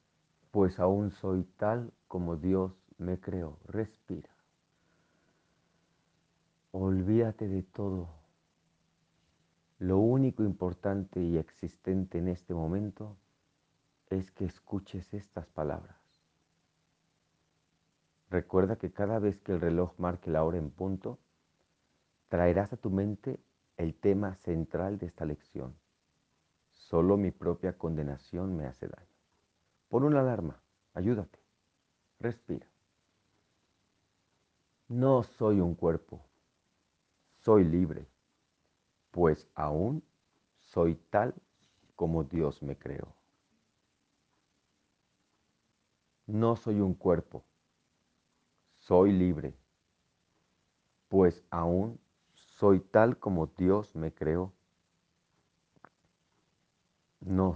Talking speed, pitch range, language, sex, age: 90 wpm, 85-100 Hz, Spanish, male, 50-69